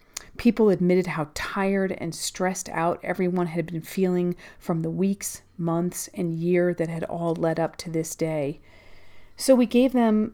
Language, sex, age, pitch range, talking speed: English, female, 40-59, 180-235 Hz, 170 wpm